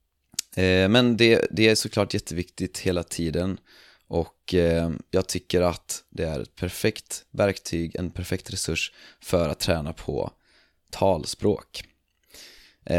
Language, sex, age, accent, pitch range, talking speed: Swedish, male, 20-39, native, 85-110 Hz, 115 wpm